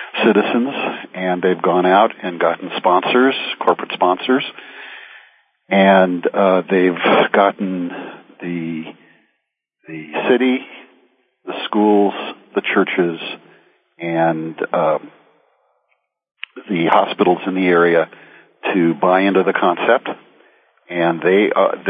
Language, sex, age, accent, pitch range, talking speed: English, male, 50-69, American, 90-100 Hz, 100 wpm